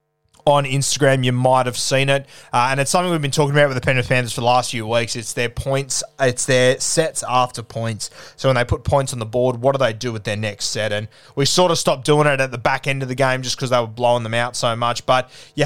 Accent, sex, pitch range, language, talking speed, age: Australian, male, 120-145 Hz, English, 280 wpm, 20-39